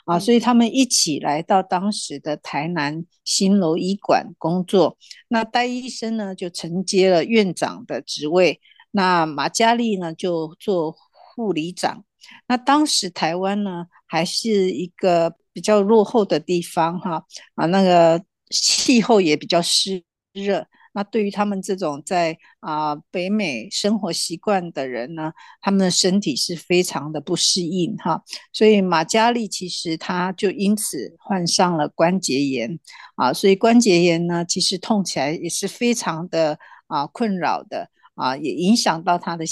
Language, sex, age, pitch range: Chinese, female, 50-69, 170-210 Hz